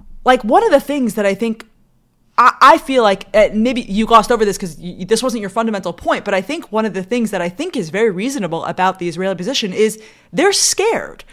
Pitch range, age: 195-275 Hz, 30-49